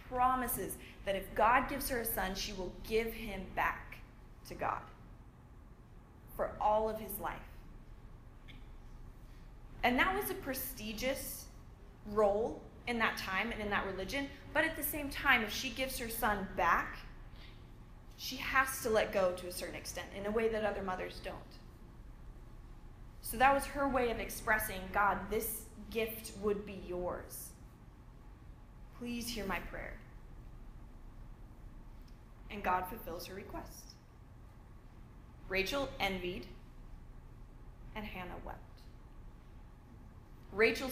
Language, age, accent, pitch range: English, 20-39, American, 195-240 Hz